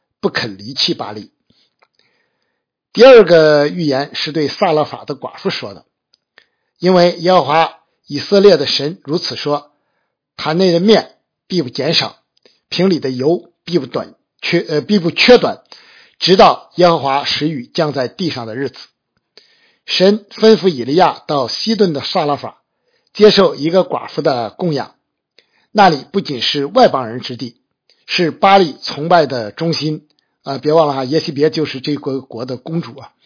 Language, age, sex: Chinese, 50-69, male